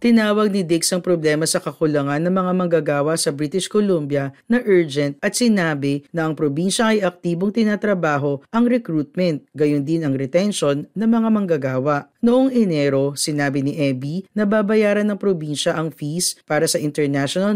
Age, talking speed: 40-59, 155 wpm